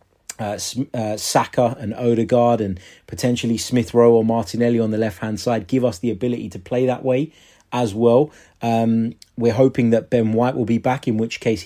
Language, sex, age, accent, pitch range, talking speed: English, male, 30-49, British, 105-125 Hz, 195 wpm